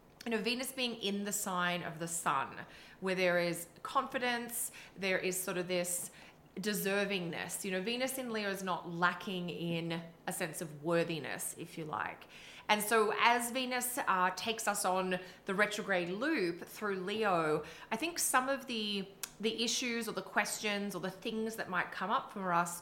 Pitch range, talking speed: 175-215 Hz, 180 wpm